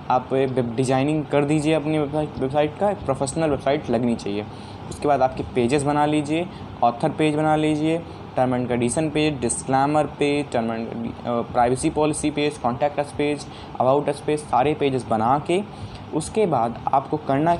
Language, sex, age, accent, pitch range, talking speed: Hindi, male, 20-39, native, 130-160 Hz, 165 wpm